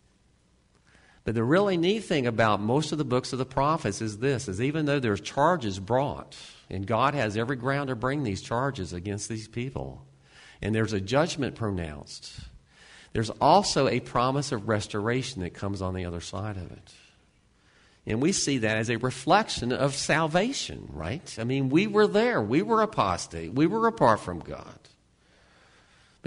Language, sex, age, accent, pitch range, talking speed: English, male, 50-69, American, 95-125 Hz, 175 wpm